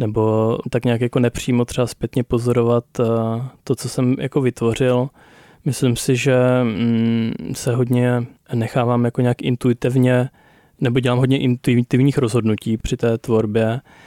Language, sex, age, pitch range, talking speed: Czech, male, 20-39, 115-125 Hz, 130 wpm